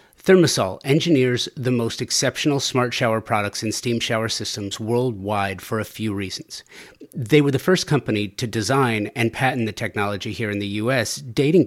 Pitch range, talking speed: 110-135 Hz, 170 wpm